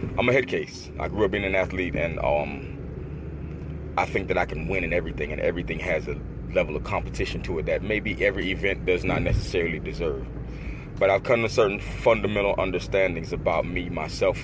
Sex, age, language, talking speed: male, 30-49, English, 195 wpm